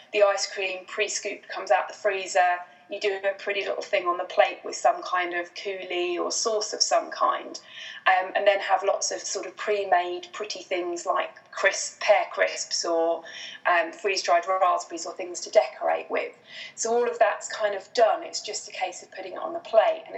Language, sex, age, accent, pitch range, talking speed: English, female, 30-49, British, 185-220 Hz, 205 wpm